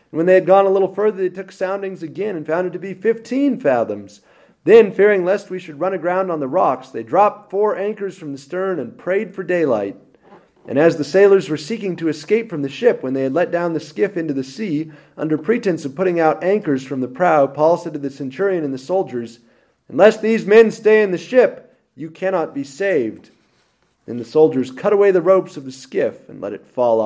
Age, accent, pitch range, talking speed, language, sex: 30-49, American, 140-200 Hz, 225 wpm, English, male